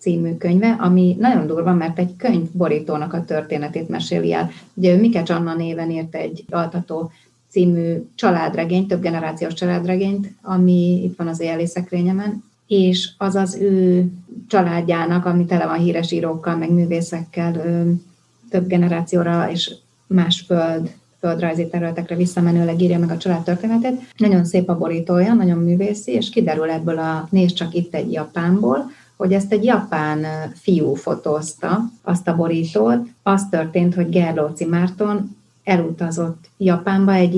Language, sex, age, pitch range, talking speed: Hungarian, female, 30-49, 165-190 Hz, 140 wpm